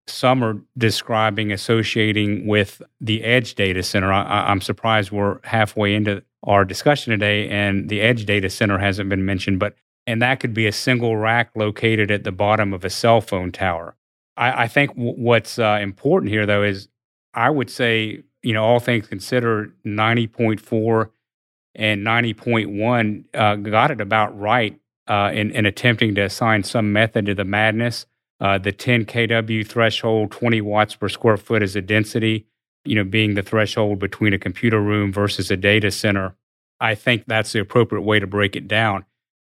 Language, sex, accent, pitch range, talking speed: English, male, American, 100-115 Hz, 170 wpm